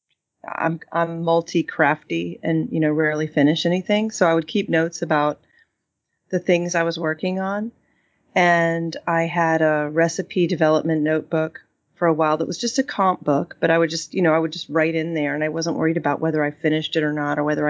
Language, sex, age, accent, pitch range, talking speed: English, female, 30-49, American, 155-175 Hz, 215 wpm